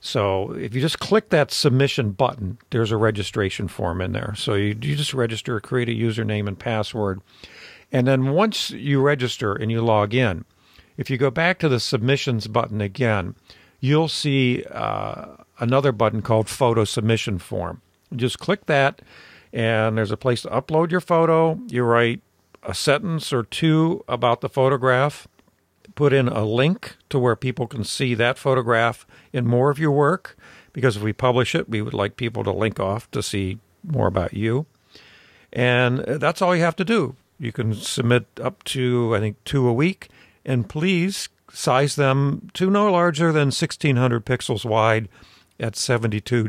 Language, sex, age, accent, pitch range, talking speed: English, male, 50-69, American, 110-140 Hz, 175 wpm